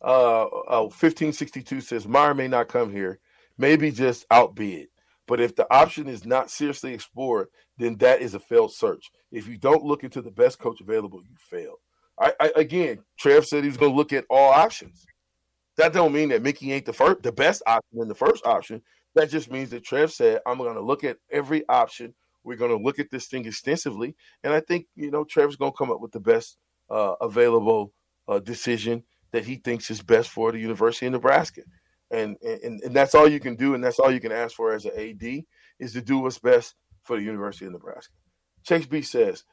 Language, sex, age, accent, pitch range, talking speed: English, male, 40-59, American, 110-165 Hz, 215 wpm